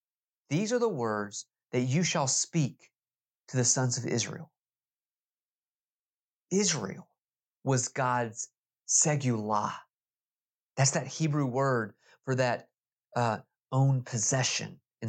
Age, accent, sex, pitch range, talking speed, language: 30-49, American, male, 125-175 Hz, 105 wpm, English